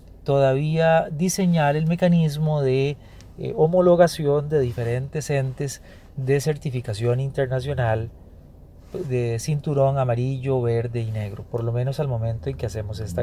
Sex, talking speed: male, 125 wpm